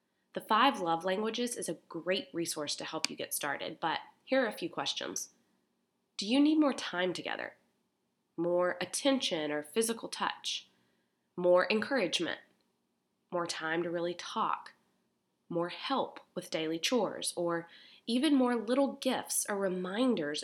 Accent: American